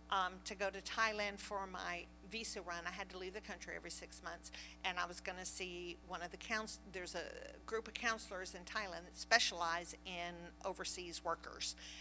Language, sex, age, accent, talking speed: English, female, 50-69, American, 200 wpm